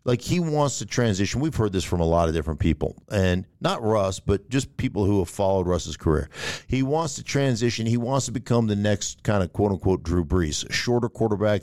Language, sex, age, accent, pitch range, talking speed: English, male, 50-69, American, 100-135 Hz, 220 wpm